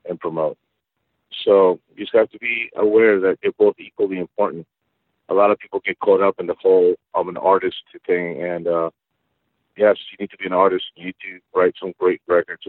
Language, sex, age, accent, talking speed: English, male, 50-69, American, 210 wpm